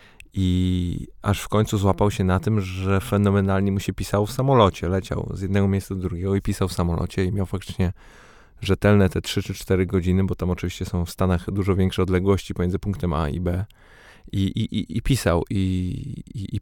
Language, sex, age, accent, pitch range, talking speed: Polish, male, 20-39, native, 95-105 Hz, 200 wpm